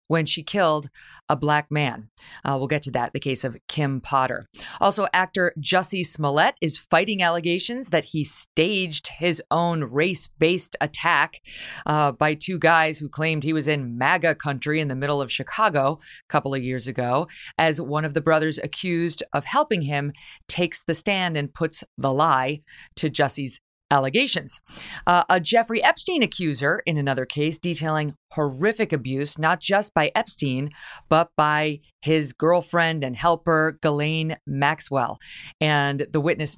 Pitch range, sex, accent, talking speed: 140-170 Hz, female, American, 160 wpm